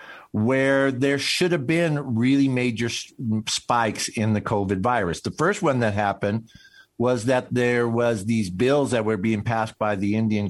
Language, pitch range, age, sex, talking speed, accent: English, 110-140 Hz, 50-69, male, 170 wpm, American